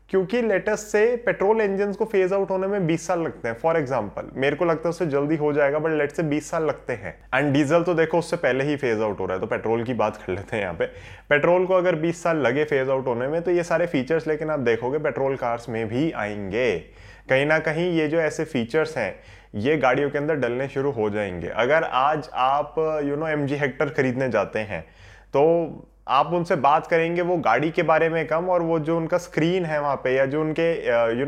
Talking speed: 235 wpm